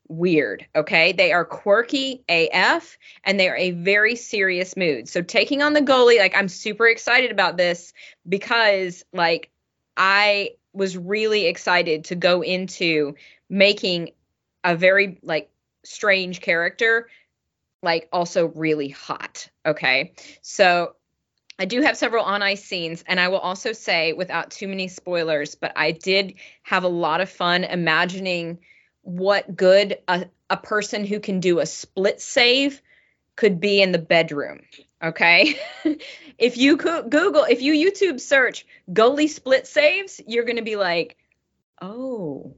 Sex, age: female, 20-39